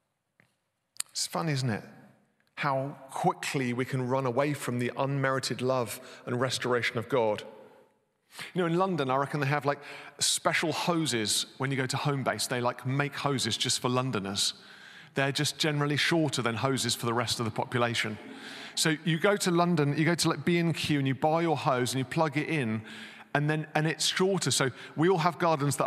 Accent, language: British, English